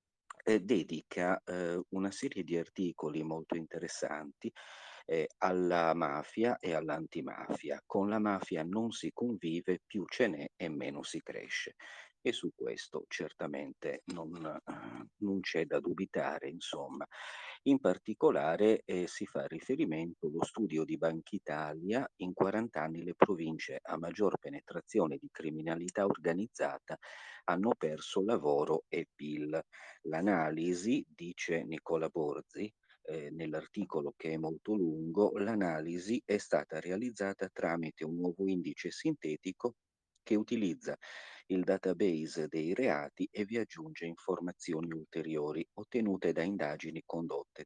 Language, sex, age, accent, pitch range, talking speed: Italian, male, 50-69, native, 80-105 Hz, 120 wpm